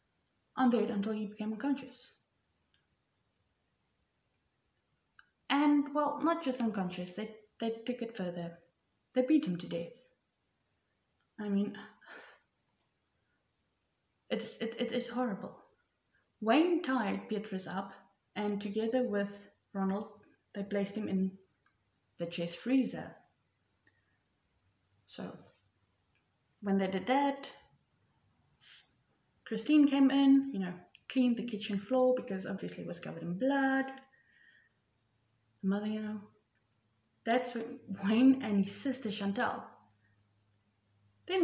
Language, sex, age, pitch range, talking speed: English, female, 20-39, 170-245 Hz, 105 wpm